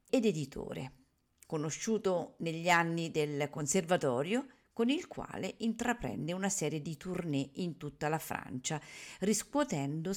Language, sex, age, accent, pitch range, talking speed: Italian, female, 50-69, native, 145-205 Hz, 120 wpm